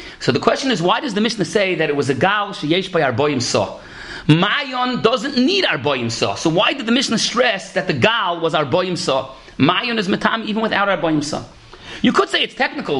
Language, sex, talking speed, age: English, male, 260 wpm, 40-59